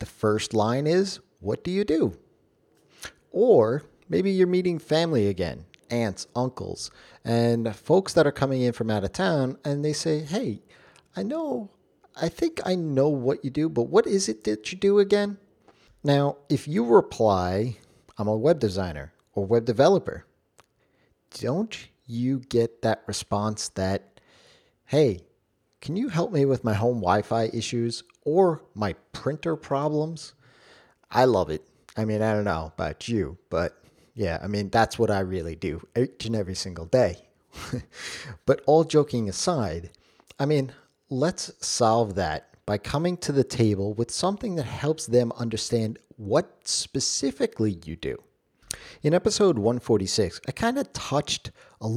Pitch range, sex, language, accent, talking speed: 105-155 Hz, male, English, American, 155 wpm